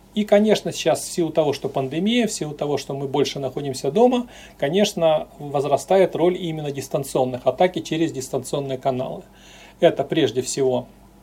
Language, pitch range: Russian, 140-190 Hz